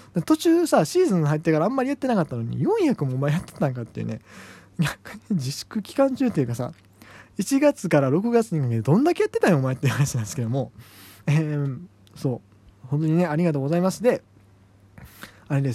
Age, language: 20-39, Japanese